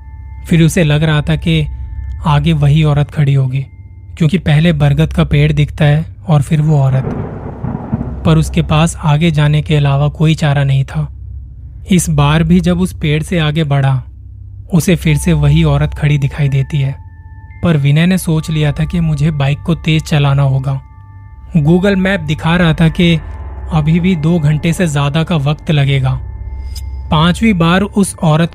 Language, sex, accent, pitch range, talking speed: Hindi, male, native, 135-165 Hz, 175 wpm